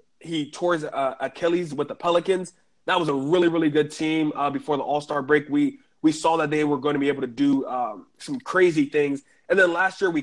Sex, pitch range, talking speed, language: male, 140-170 Hz, 235 wpm, English